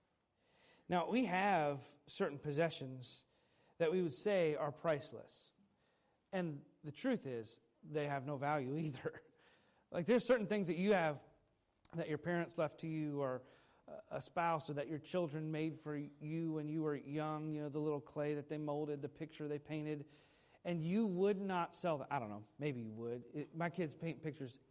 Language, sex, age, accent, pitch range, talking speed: English, male, 40-59, American, 145-190 Hz, 180 wpm